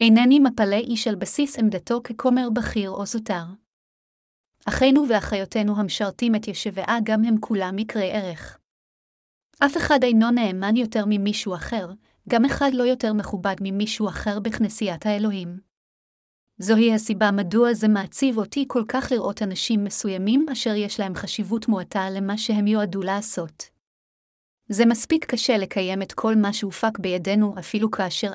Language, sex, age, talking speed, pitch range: Hebrew, female, 30-49, 140 wpm, 200-230 Hz